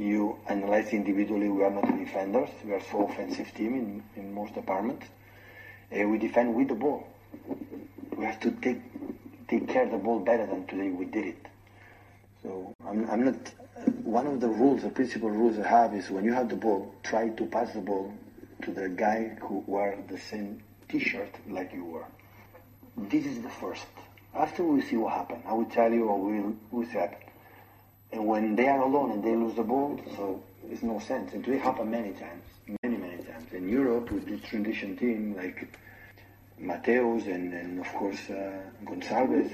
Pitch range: 100-115 Hz